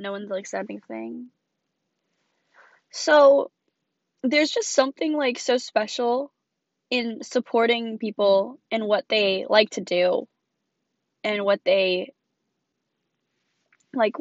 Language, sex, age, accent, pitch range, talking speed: English, female, 10-29, American, 200-275 Hz, 105 wpm